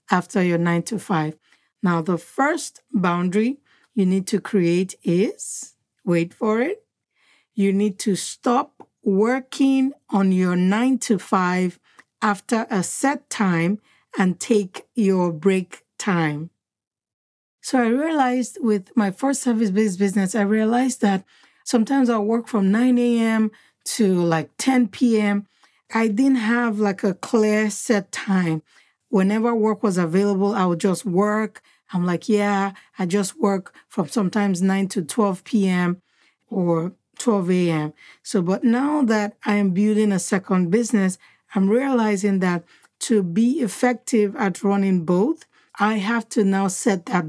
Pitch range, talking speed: 185-230 Hz, 145 wpm